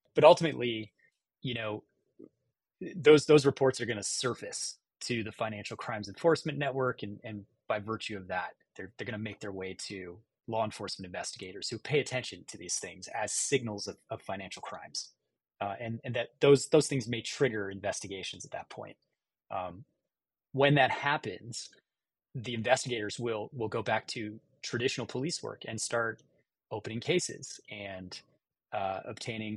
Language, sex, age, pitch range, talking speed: English, male, 30-49, 105-140 Hz, 160 wpm